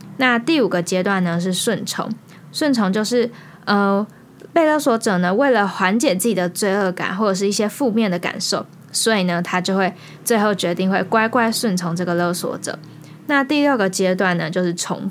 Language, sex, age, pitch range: Chinese, female, 10-29, 185-235 Hz